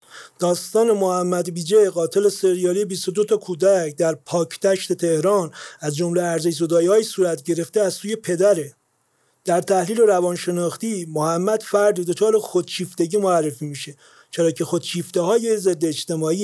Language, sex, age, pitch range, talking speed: Persian, male, 40-59, 165-215 Hz, 130 wpm